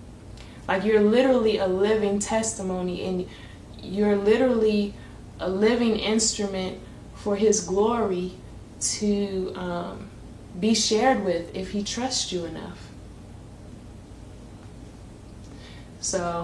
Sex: female